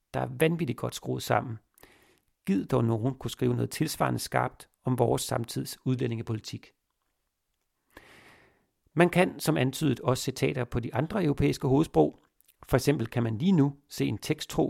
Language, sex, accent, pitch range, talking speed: Danish, male, native, 120-145 Hz, 155 wpm